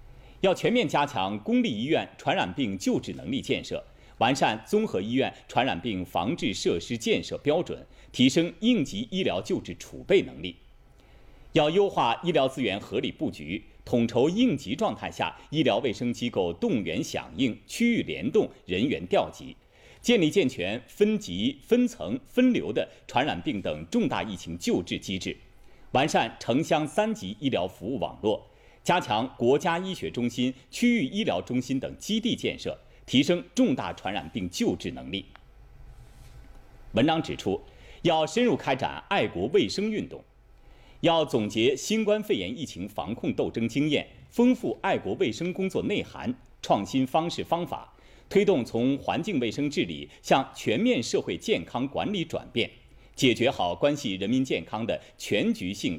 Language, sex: Chinese, male